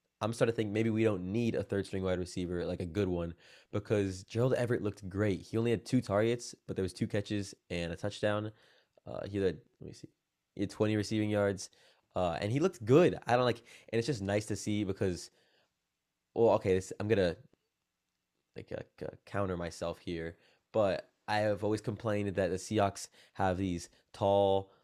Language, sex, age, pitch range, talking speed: English, male, 20-39, 90-105 Hz, 195 wpm